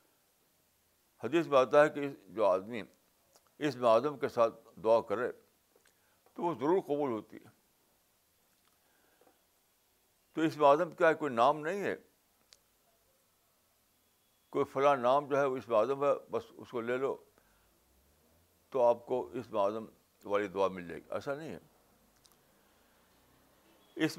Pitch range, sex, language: 105-155 Hz, male, Urdu